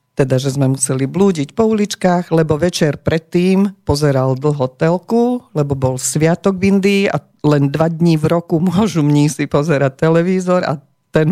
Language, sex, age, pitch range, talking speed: Slovak, female, 40-59, 145-180 Hz, 150 wpm